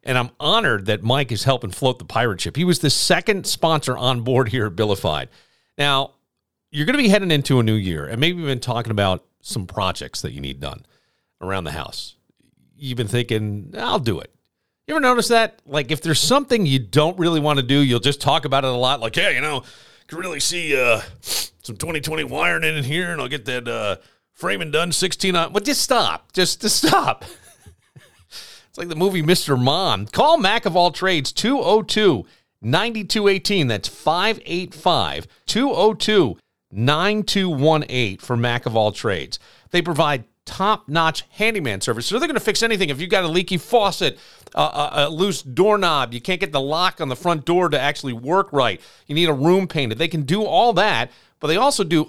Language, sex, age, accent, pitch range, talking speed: English, male, 40-59, American, 125-195 Hz, 195 wpm